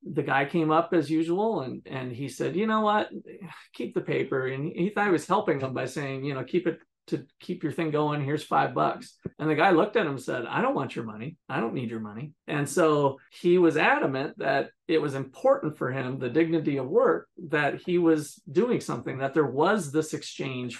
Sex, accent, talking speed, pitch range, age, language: male, American, 230 wpm, 130-165 Hz, 40-59, English